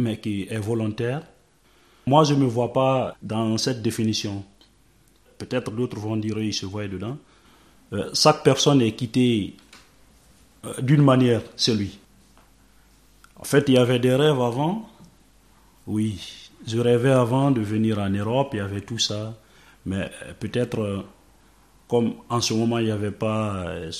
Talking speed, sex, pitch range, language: 165 wpm, male, 100-125 Hz, French